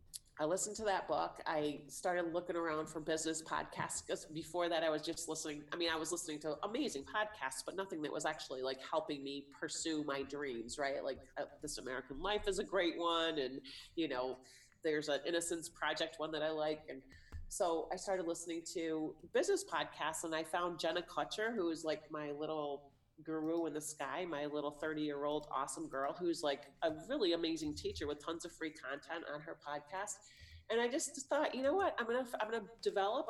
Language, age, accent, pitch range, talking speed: English, 30-49, American, 150-195 Hz, 205 wpm